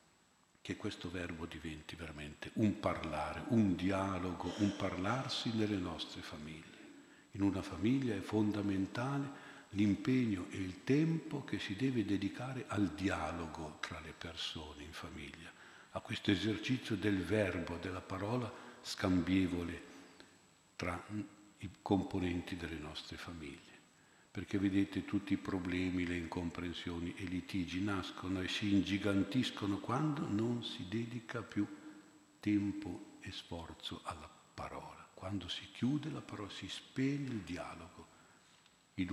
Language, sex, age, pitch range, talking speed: Italian, male, 50-69, 90-110 Hz, 125 wpm